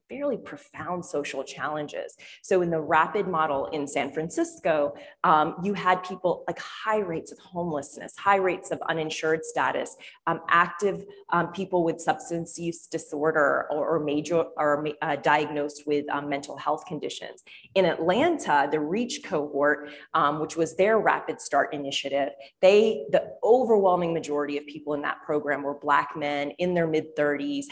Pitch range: 150-185 Hz